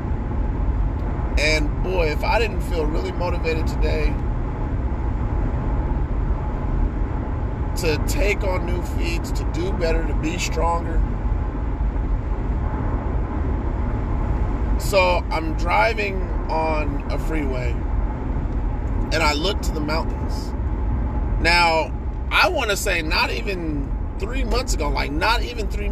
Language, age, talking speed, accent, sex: English, 30-49, 105 wpm, American, male